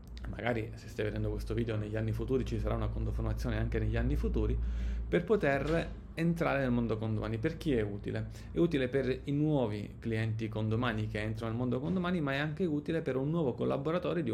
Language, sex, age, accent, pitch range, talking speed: Italian, male, 30-49, native, 110-130 Hz, 200 wpm